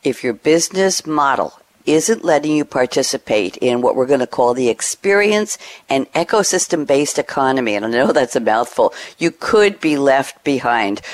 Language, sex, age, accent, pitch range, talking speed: English, female, 50-69, American, 125-155 Hz, 160 wpm